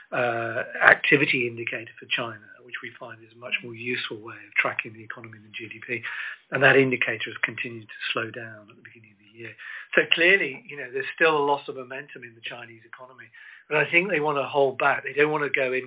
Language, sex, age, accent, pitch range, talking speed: English, male, 50-69, British, 115-170 Hz, 235 wpm